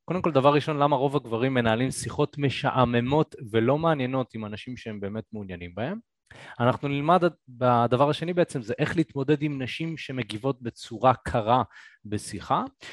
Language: Hebrew